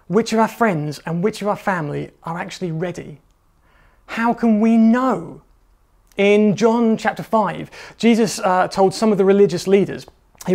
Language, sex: English, male